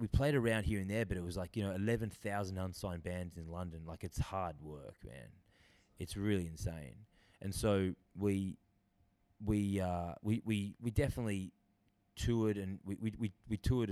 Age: 20-39